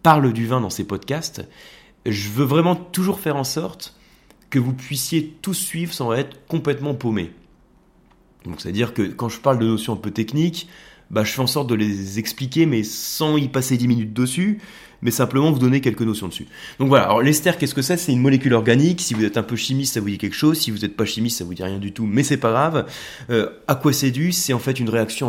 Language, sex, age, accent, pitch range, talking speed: French, male, 30-49, French, 105-145 Hz, 240 wpm